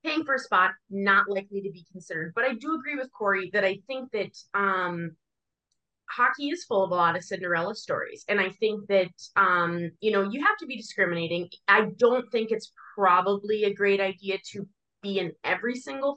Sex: female